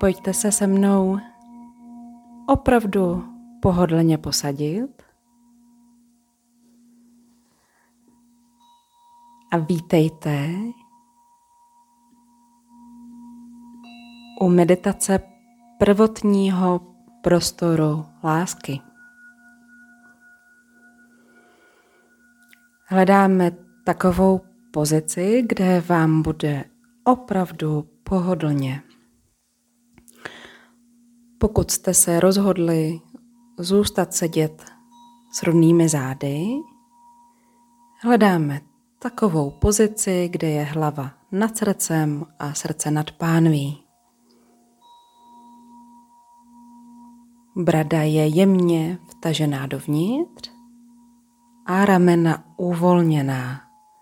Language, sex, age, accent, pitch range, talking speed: Czech, female, 30-49, native, 165-240 Hz, 55 wpm